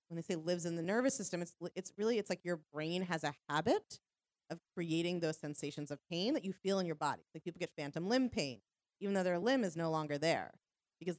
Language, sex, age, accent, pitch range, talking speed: English, female, 30-49, American, 145-175 Hz, 240 wpm